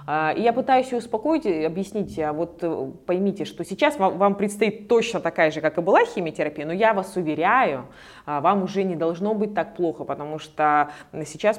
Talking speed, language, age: 175 wpm, Russian, 20-39